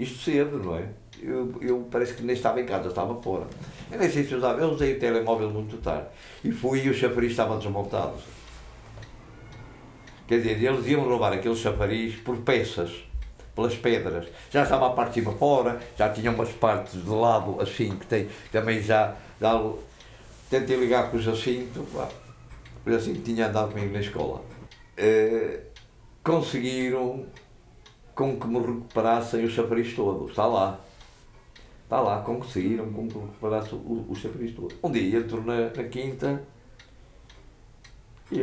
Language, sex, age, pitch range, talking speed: Portuguese, male, 60-79, 105-125 Hz, 155 wpm